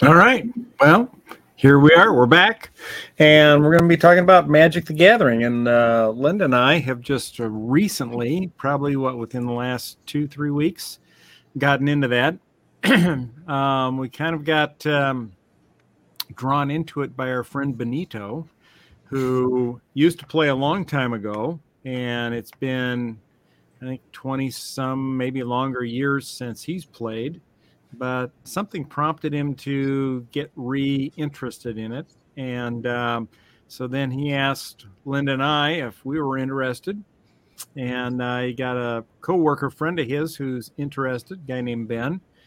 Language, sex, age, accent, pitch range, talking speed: English, male, 50-69, American, 125-150 Hz, 155 wpm